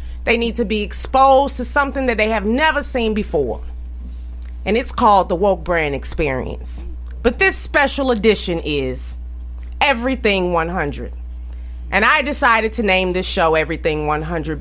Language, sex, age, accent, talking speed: English, female, 30-49, American, 150 wpm